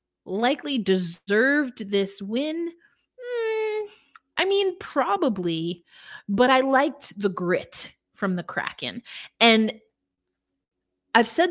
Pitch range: 195-275 Hz